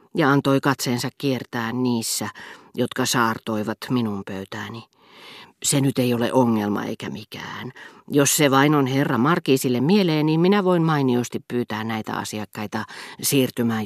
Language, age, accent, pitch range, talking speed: Finnish, 40-59, native, 120-155 Hz, 135 wpm